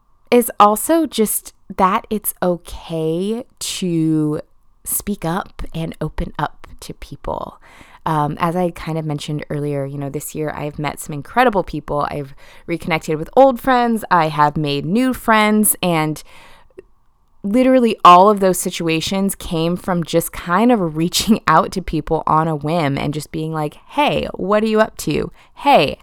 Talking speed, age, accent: 160 wpm, 20-39, American